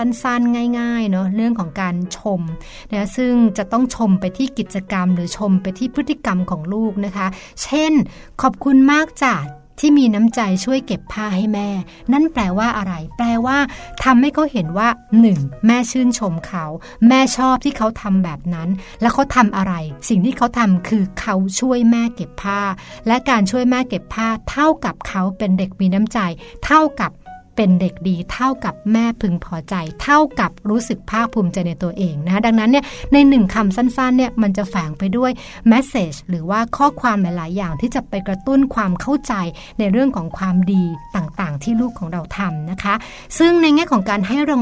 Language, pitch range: Thai, 190-245 Hz